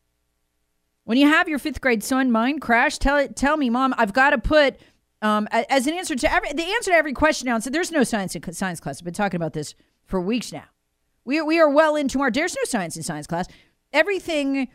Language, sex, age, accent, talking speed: English, female, 40-59, American, 245 wpm